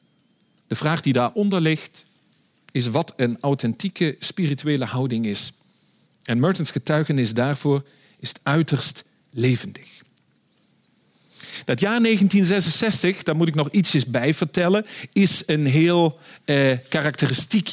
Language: Dutch